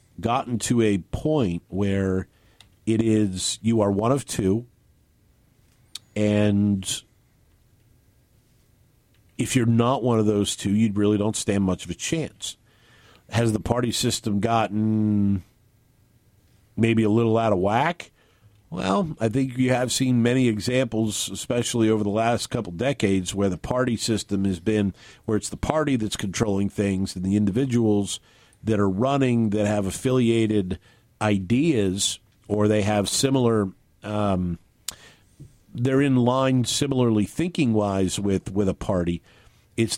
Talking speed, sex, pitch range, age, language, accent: 135 wpm, male, 100-115 Hz, 50-69, English, American